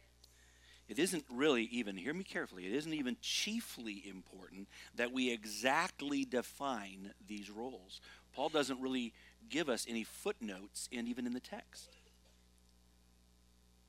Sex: male